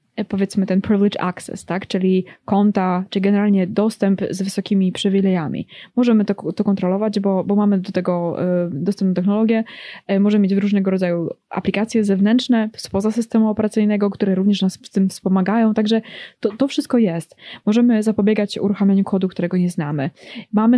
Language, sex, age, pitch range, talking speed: Polish, female, 20-39, 195-230 Hz, 155 wpm